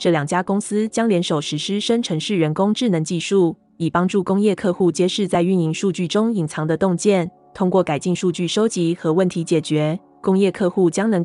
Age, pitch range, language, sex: 20-39, 165-200 Hz, Chinese, female